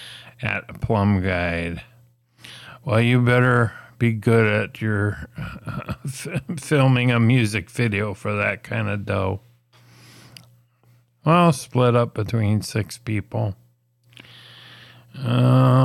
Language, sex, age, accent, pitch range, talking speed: English, male, 50-69, American, 115-130 Hz, 105 wpm